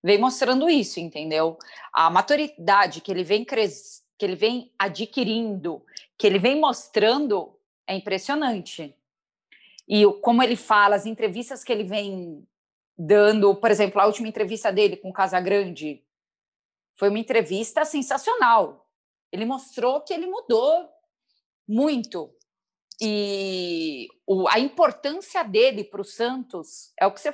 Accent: Brazilian